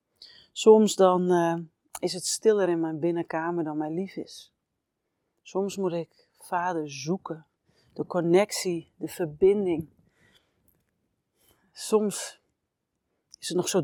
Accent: Dutch